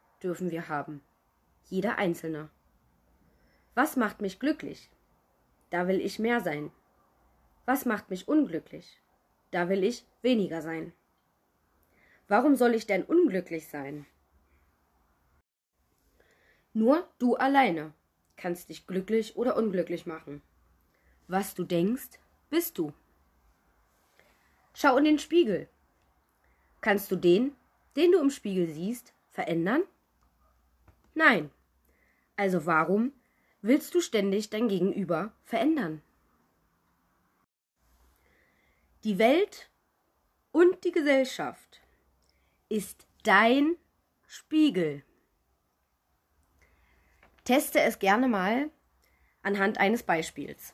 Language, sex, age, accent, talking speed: German, female, 20-39, German, 95 wpm